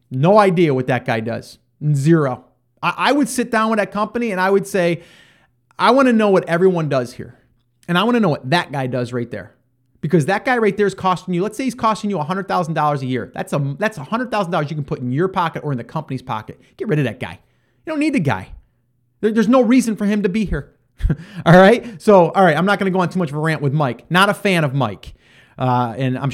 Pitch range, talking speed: 130-200 Hz, 255 wpm